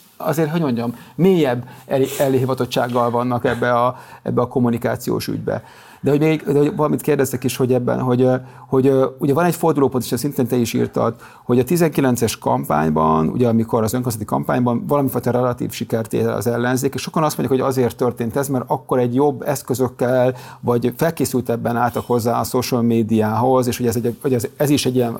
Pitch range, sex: 120-145 Hz, male